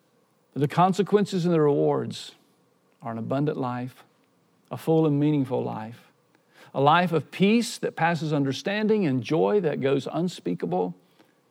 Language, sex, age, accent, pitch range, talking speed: English, male, 50-69, American, 140-175 Hz, 135 wpm